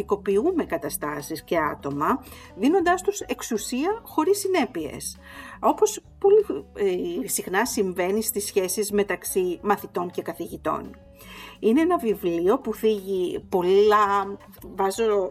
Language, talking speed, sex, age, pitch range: Greek, 100 wpm, female, 50-69, 190-305 Hz